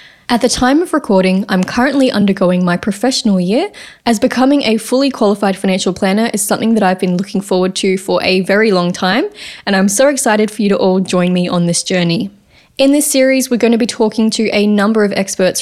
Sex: female